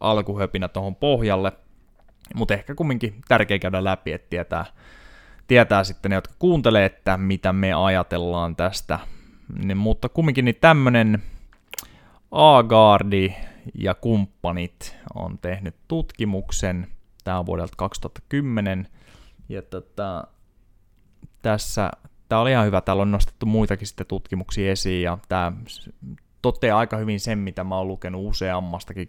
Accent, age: native, 20-39